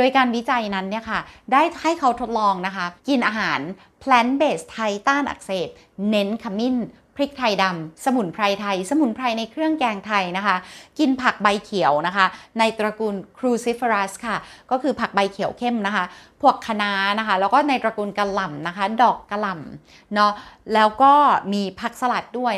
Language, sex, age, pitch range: Thai, female, 30-49, 195-250 Hz